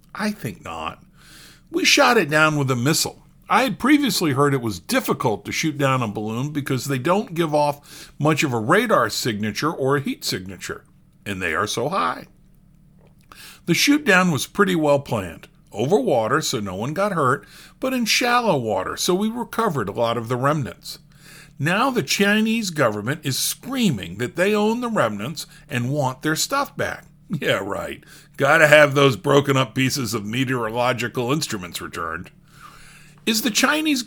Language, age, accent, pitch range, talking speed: English, 50-69, American, 130-195 Hz, 175 wpm